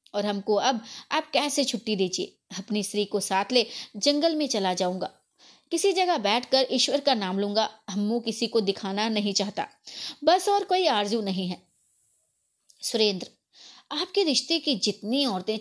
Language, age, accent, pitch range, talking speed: Hindi, 20-39, native, 200-270 Hz, 160 wpm